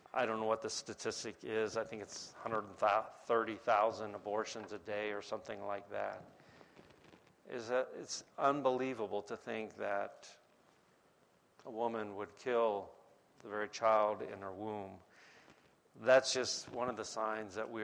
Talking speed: 140 wpm